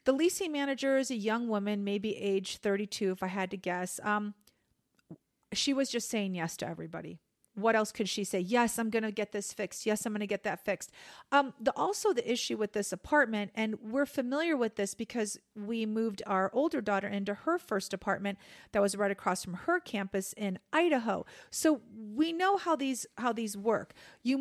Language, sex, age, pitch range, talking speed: English, female, 40-59, 200-250 Hz, 200 wpm